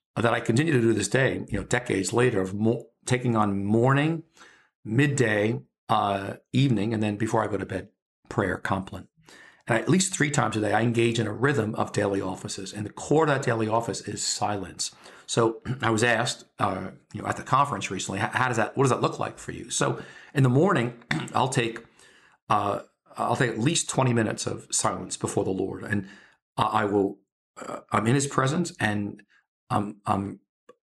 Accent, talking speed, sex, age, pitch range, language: American, 200 wpm, male, 50-69, 105-125 Hz, English